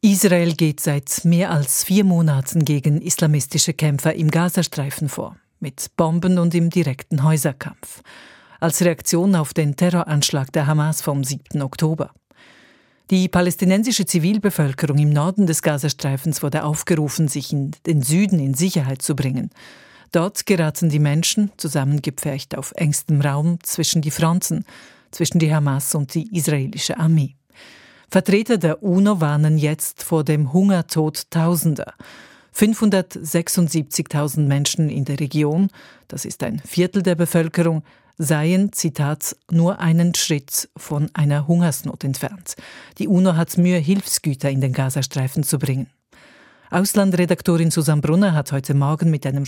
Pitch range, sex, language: 145-175 Hz, female, German